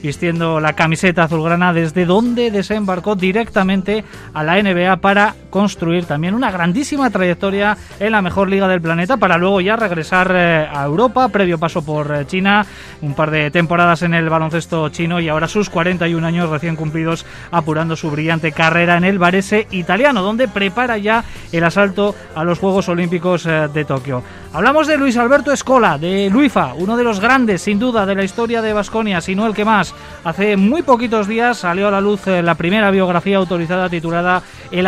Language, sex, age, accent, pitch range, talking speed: Spanish, male, 20-39, Spanish, 170-215 Hz, 180 wpm